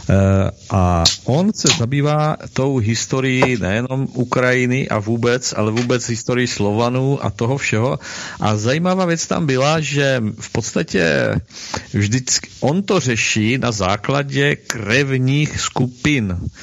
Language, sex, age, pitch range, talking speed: Czech, male, 50-69, 110-140 Hz, 120 wpm